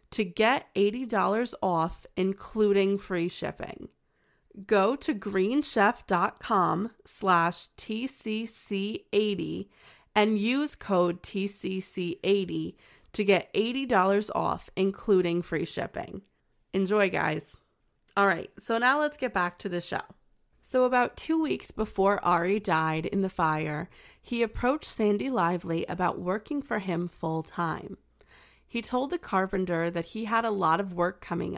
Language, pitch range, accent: English, 175-220 Hz, American